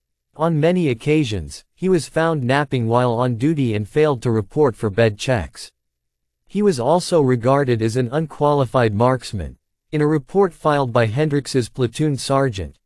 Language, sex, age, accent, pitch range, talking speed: English, male, 40-59, American, 115-150 Hz, 155 wpm